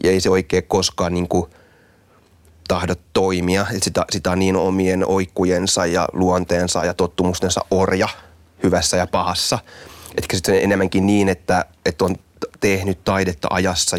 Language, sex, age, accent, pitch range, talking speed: Finnish, male, 30-49, native, 90-100 Hz, 135 wpm